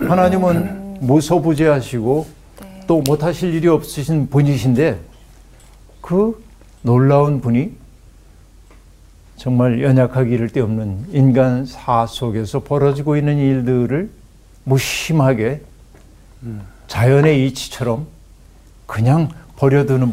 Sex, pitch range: male, 115-150 Hz